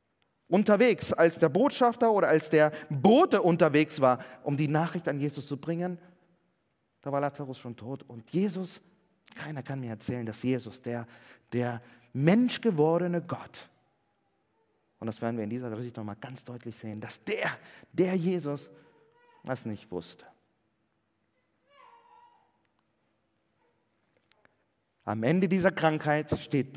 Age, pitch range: 30-49, 115-175 Hz